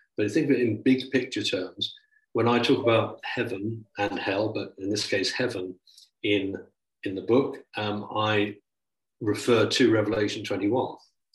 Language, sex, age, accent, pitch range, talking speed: English, male, 50-69, British, 100-135 Hz, 170 wpm